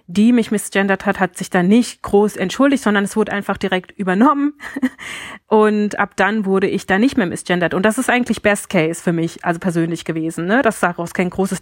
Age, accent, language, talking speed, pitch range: 30-49, German, German, 210 wpm, 190-220 Hz